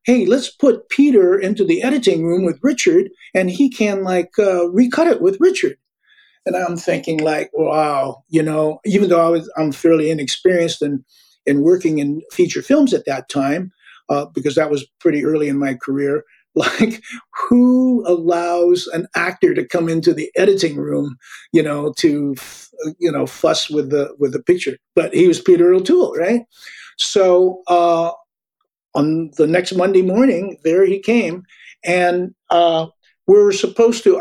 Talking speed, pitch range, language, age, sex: 165 wpm, 155-225 Hz, English, 50-69, male